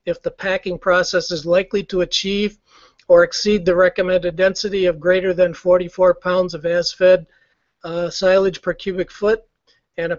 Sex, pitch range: male, 175-200 Hz